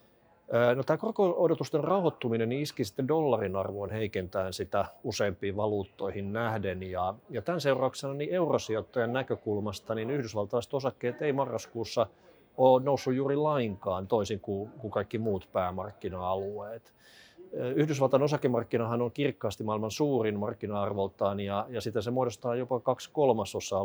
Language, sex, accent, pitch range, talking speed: Finnish, male, native, 105-135 Hz, 130 wpm